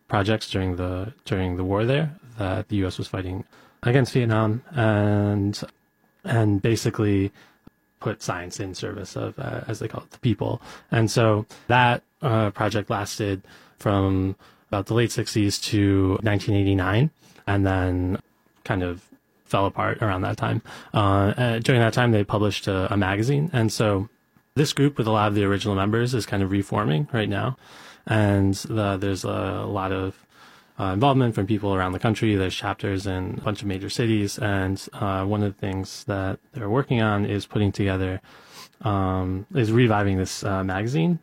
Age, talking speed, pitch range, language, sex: 20-39, 170 wpm, 95-115 Hz, English, male